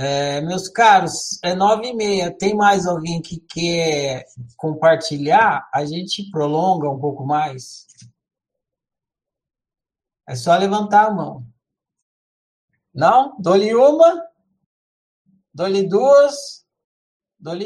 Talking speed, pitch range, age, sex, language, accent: 100 wpm, 145-195 Hz, 60-79, male, Portuguese, Brazilian